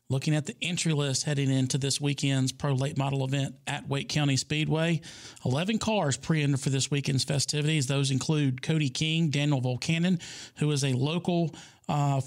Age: 40-59